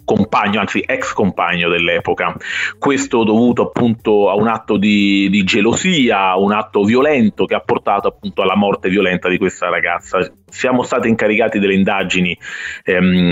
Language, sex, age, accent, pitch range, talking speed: Italian, male, 30-49, native, 95-110 Hz, 150 wpm